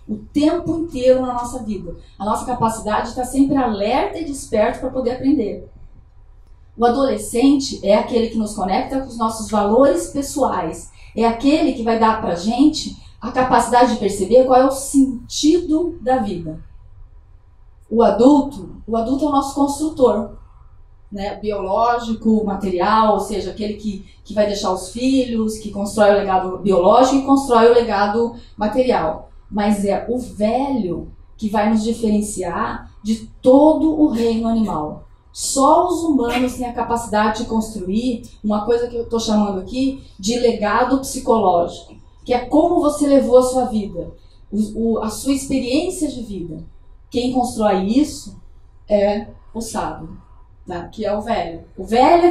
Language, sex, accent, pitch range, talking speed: Portuguese, female, Brazilian, 210-260 Hz, 155 wpm